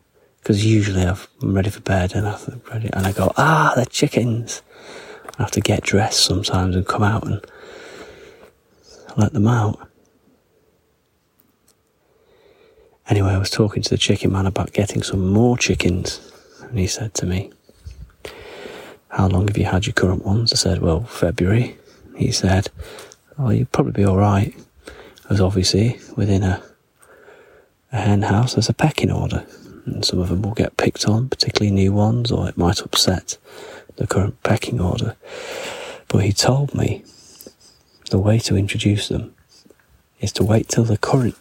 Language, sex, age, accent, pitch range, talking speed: English, male, 30-49, British, 95-125 Hz, 160 wpm